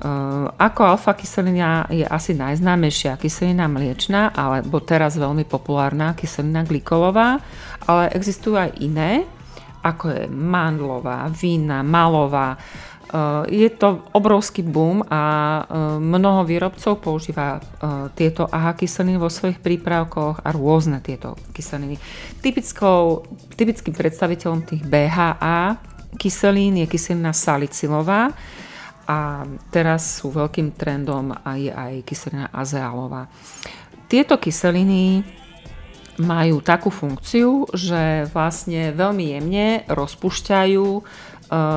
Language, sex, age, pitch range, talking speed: Slovak, female, 40-59, 145-185 Hz, 105 wpm